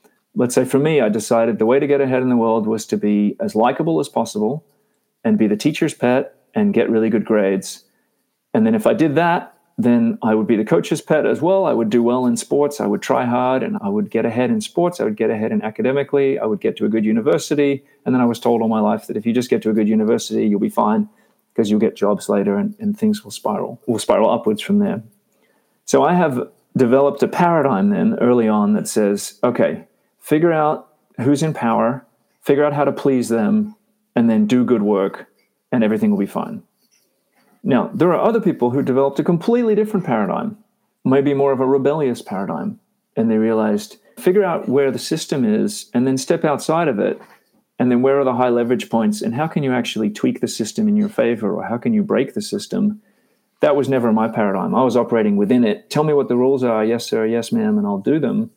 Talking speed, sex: 230 wpm, male